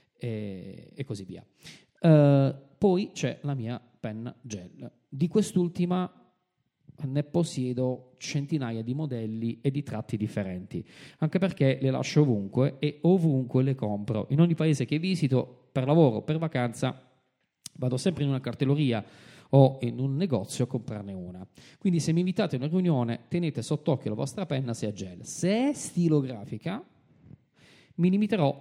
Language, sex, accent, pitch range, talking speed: Italian, male, native, 120-165 Hz, 150 wpm